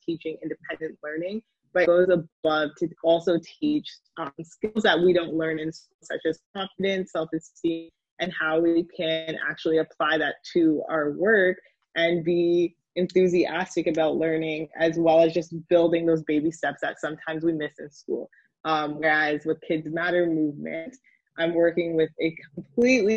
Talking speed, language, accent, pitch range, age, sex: 165 wpm, English, American, 160-175 Hz, 20-39, female